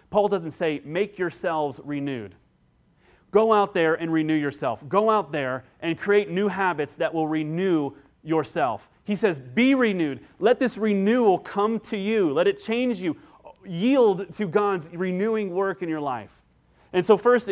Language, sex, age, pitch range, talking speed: English, male, 30-49, 145-195 Hz, 165 wpm